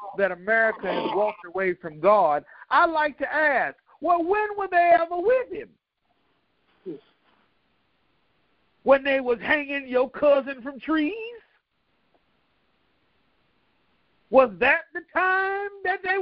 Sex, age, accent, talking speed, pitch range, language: male, 50-69, American, 120 wpm, 230-345 Hz, English